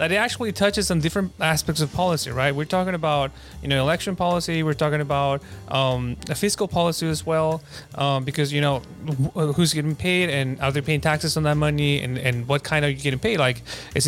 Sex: male